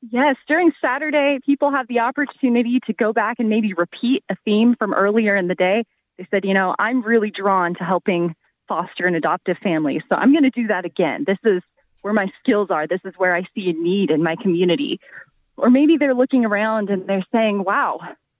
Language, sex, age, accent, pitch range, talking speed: English, female, 30-49, American, 190-245 Hz, 210 wpm